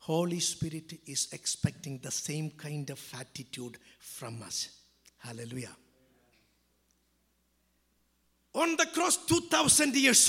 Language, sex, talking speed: English, male, 100 wpm